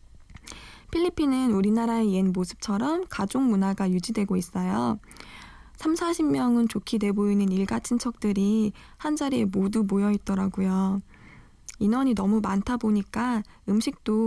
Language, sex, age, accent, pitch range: Korean, female, 20-39, native, 195-245 Hz